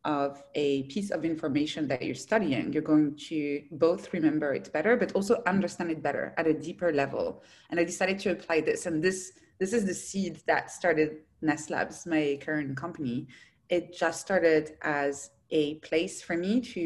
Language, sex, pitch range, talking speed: English, female, 150-180 Hz, 185 wpm